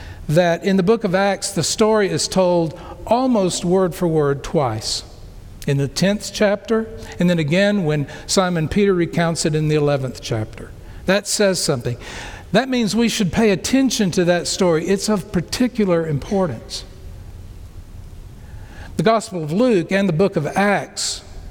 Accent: American